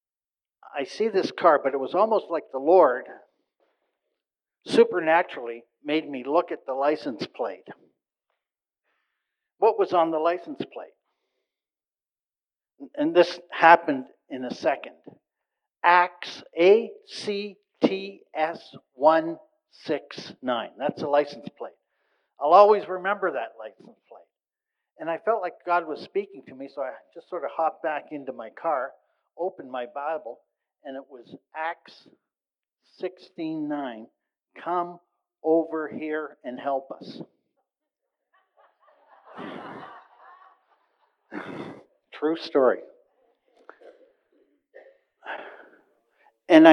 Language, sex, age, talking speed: English, male, 60-79, 105 wpm